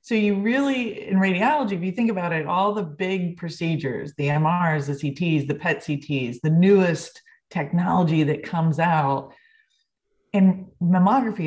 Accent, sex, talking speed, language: American, female, 150 wpm, English